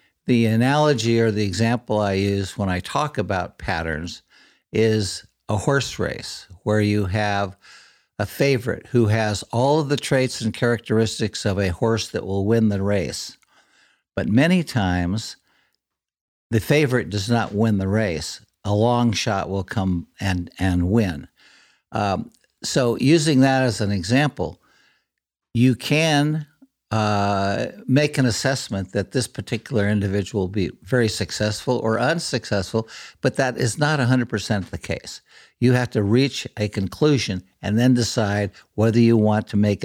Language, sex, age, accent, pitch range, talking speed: English, male, 60-79, American, 100-125 Hz, 150 wpm